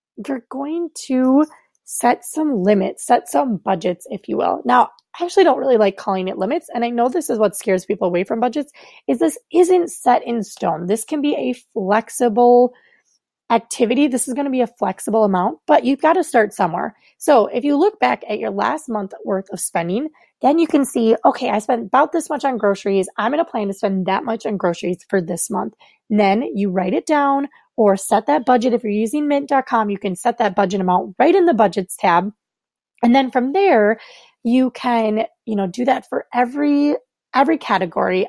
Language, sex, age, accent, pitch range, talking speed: English, female, 20-39, American, 200-275 Hz, 210 wpm